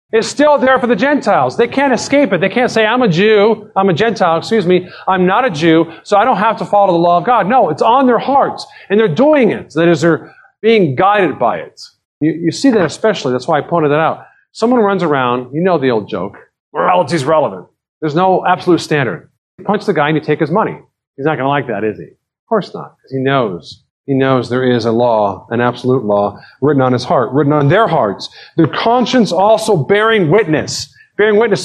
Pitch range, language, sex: 135-205 Hz, English, male